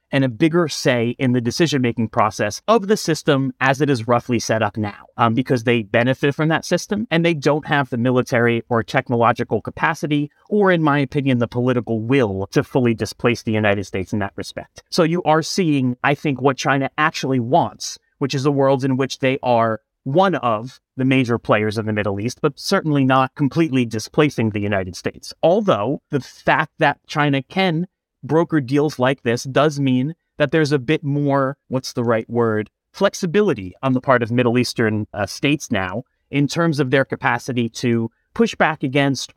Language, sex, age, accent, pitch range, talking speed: English, male, 30-49, American, 115-150 Hz, 190 wpm